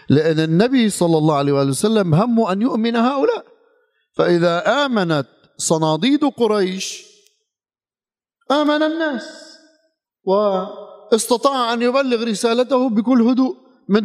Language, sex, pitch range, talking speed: Arabic, male, 175-275 Hz, 100 wpm